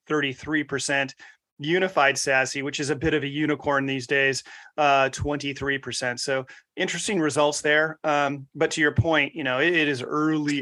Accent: American